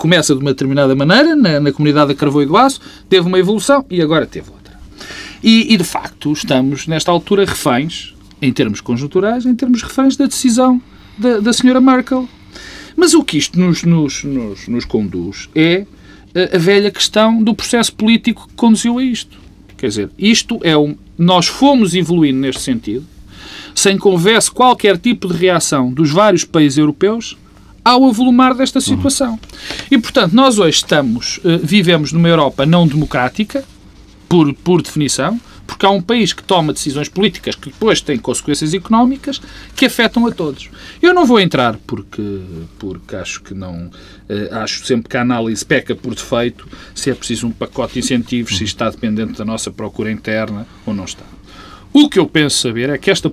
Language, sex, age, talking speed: Portuguese, male, 40-59, 175 wpm